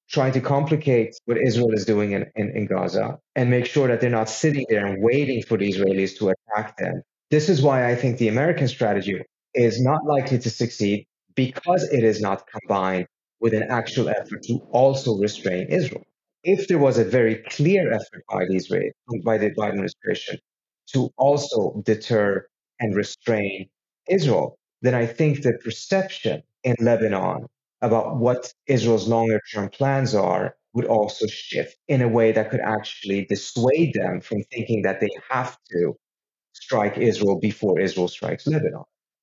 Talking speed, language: 165 wpm, English